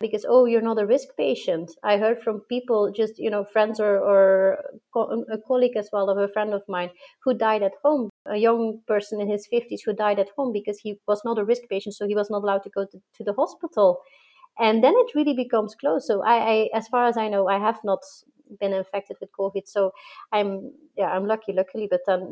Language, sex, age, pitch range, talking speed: English, female, 30-49, 195-235 Hz, 235 wpm